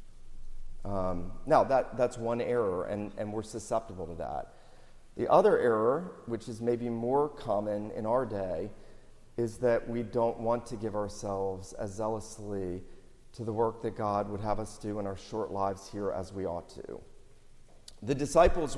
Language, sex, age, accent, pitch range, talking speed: English, male, 40-59, American, 115-140 Hz, 165 wpm